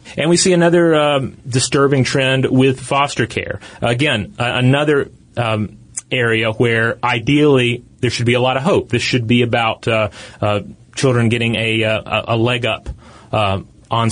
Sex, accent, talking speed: male, American, 160 wpm